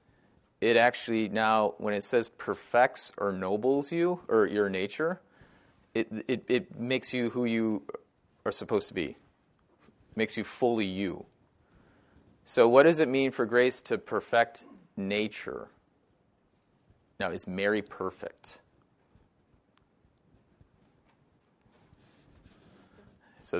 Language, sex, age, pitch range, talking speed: English, male, 30-49, 110-165 Hz, 110 wpm